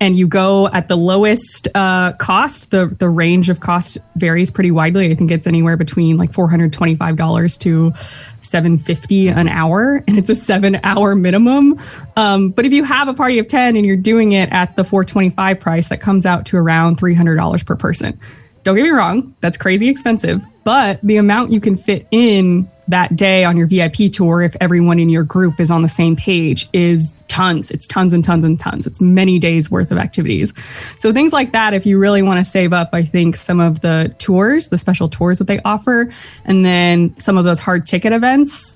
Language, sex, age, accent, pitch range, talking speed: English, female, 20-39, American, 175-220 Hz, 205 wpm